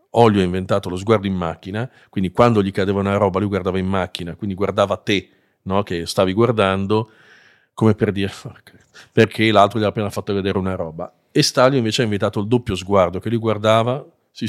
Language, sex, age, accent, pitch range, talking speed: Italian, male, 40-59, native, 100-120 Hz, 200 wpm